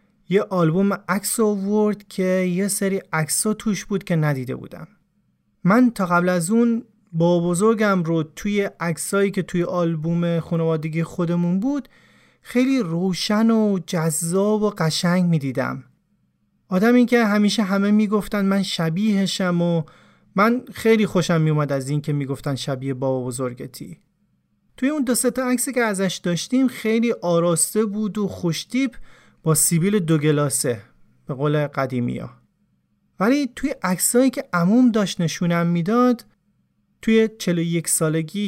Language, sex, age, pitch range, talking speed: Persian, male, 30-49, 165-215 Hz, 135 wpm